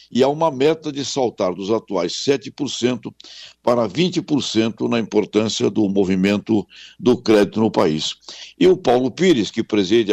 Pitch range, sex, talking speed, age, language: 105-155 Hz, male, 150 wpm, 60-79, Portuguese